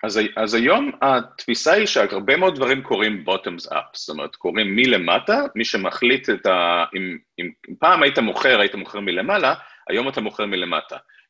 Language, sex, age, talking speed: Hebrew, male, 30-49, 165 wpm